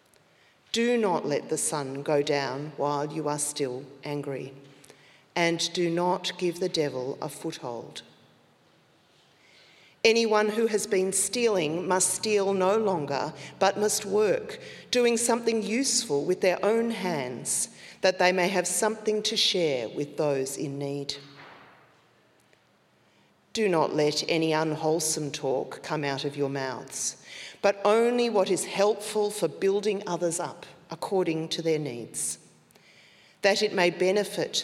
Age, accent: 40-59, Australian